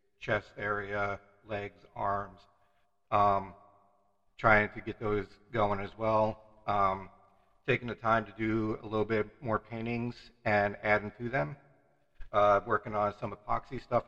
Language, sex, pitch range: English, male, 95-110 Hz